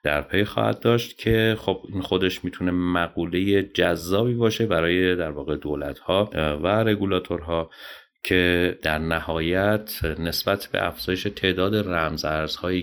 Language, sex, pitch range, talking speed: Persian, male, 75-95 Hz, 135 wpm